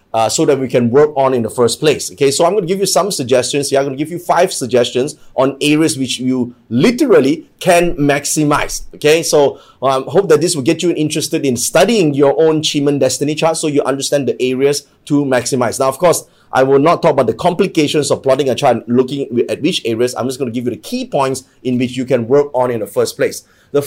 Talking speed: 245 wpm